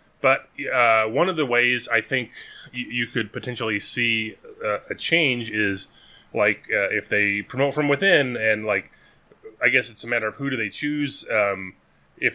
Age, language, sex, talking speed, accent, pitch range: 20-39, English, male, 185 wpm, American, 110-130 Hz